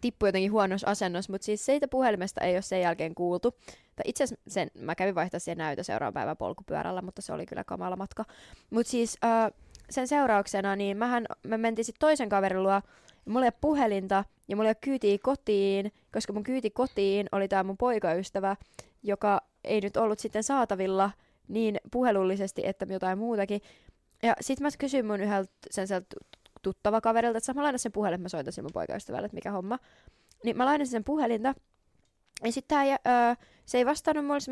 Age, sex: 20-39, female